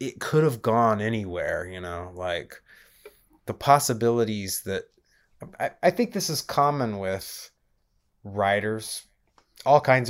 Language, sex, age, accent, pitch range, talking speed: English, male, 20-39, American, 95-130 Hz, 125 wpm